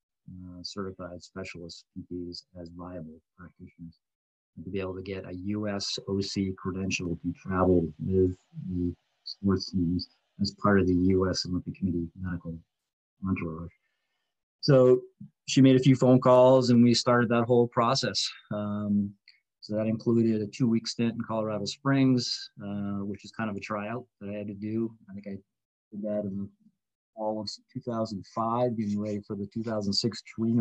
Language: English